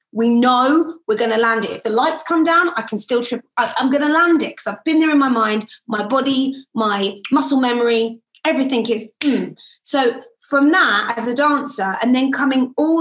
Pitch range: 230-285 Hz